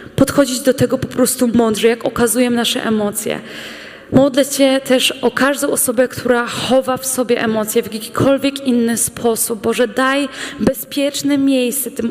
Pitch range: 245-280 Hz